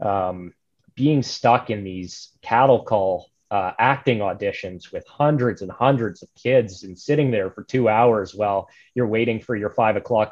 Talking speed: 170 wpm